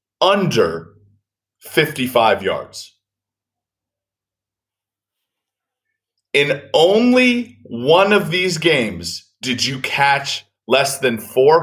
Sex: male